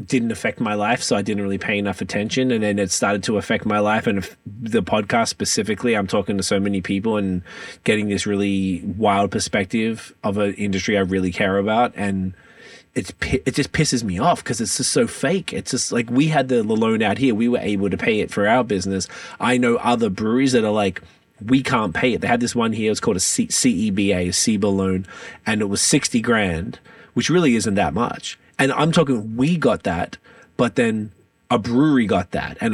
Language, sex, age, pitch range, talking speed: English, male, 20-39, 100-130 Hz, 220 wpm